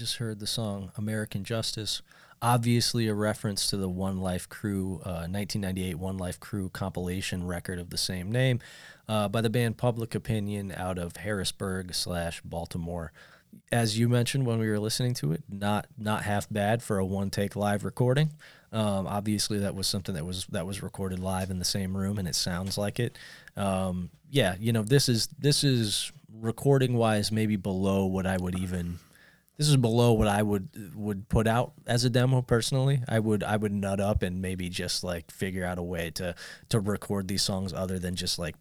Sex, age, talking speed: male, 20-39, 195 wpm